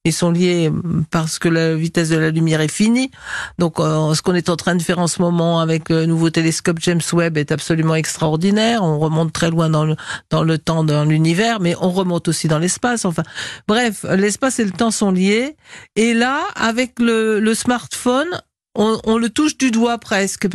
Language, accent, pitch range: French, French, 165-220 Hz